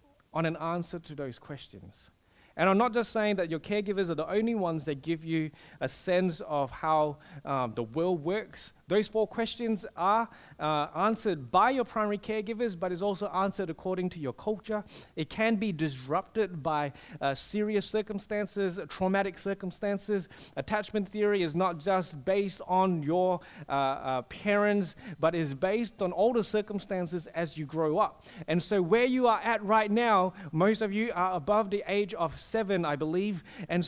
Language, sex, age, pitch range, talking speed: English, male, 30-49, 160-215 Hz, 175 wpm